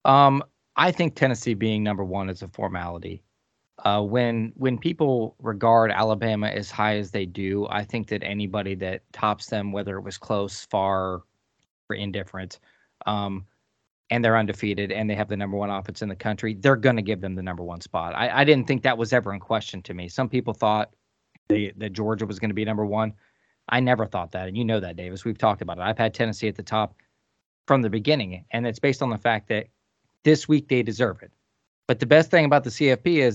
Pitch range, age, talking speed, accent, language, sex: 100-125 Hz, 20-39, 220 wpm, American, English, male